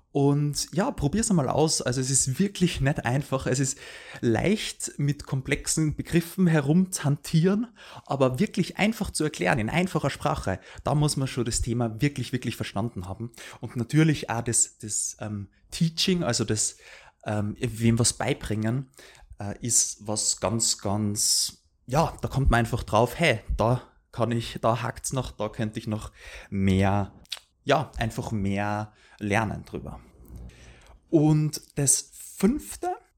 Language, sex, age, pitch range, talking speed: German, male, 20-39, 115-155 Hz, 150 wpm